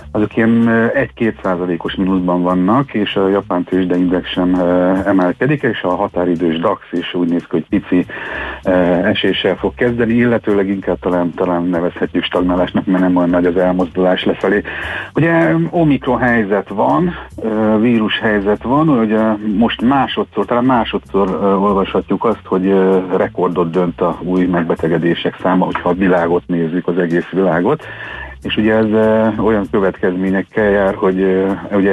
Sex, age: male, 60-79